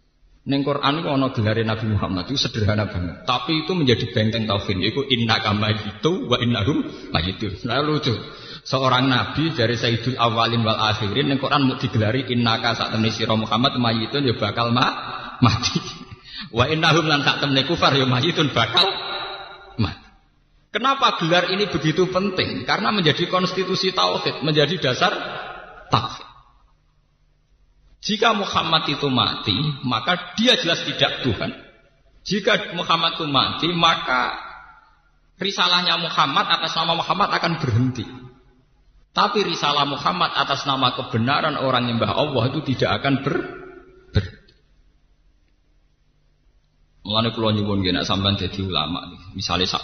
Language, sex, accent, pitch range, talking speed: Indonesian, male, native, 110-160 Hz, 130 wpm